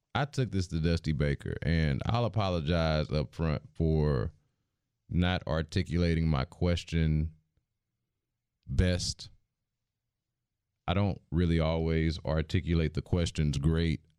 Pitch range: 80-100 Hz